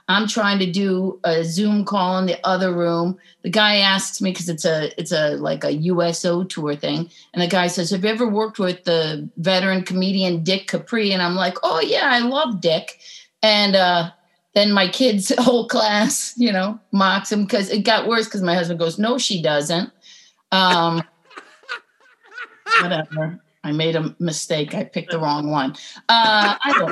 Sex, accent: female, American